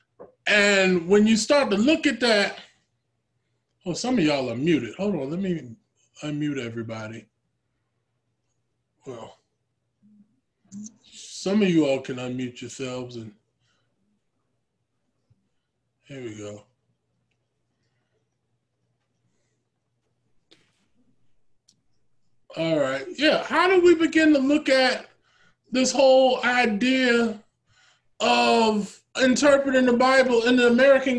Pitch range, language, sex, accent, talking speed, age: 200-275 Hz, English, male, American, 100 wpm, 20-39